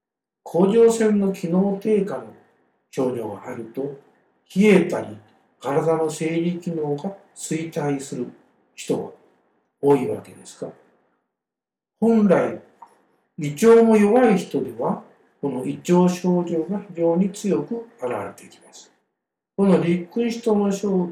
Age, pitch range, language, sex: 60-79, 150-215 Hz, Japanese, male